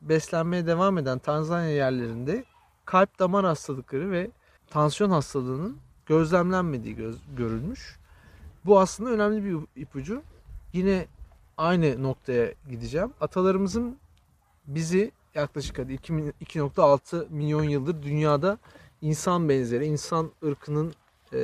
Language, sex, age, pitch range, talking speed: Turkish, male, 40-59, 145-200 Hz, 90 wpm